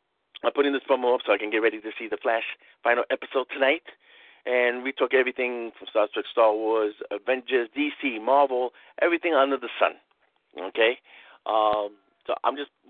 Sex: male